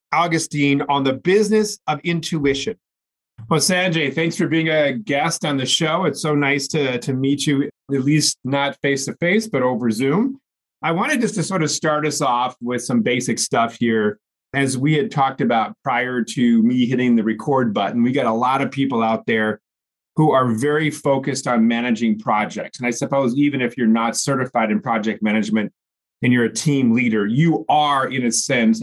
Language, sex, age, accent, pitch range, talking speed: English, male, 30-49, American, 115-155 Hz, 190 wpm